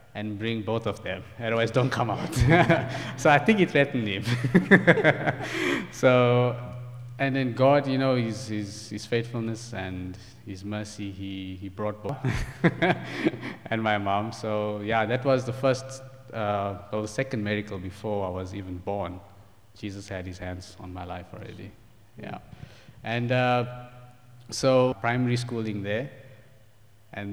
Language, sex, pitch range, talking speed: English, male, 105-125 Hz, 145 wpm